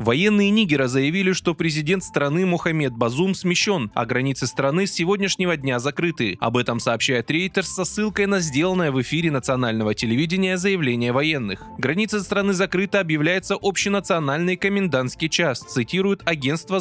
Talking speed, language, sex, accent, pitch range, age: 140 wpm, Russian, male, native, 140-190 Hz, 20-39